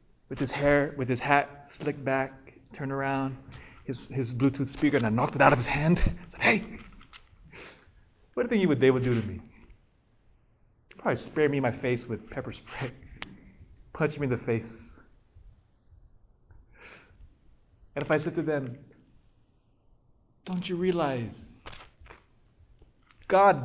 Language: English